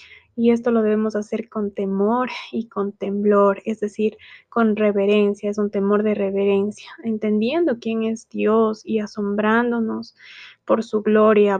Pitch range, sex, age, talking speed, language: 215-235 Hz, female, 20-39, 145 wpm, Spanish